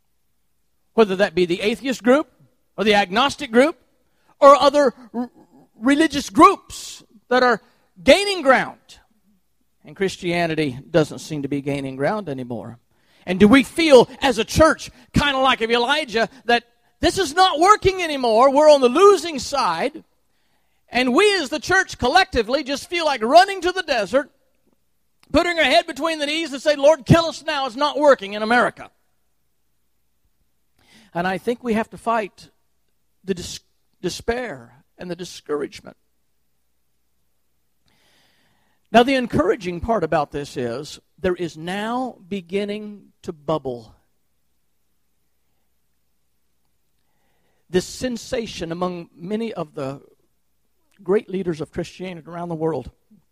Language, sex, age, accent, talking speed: English, male, 40-59, American, 135 wpm